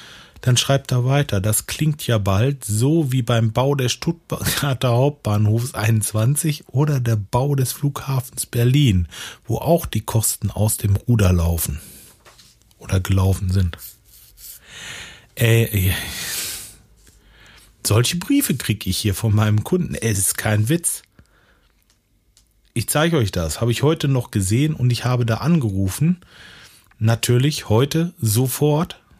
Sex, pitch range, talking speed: male, 100-130 Hz, 130 wpm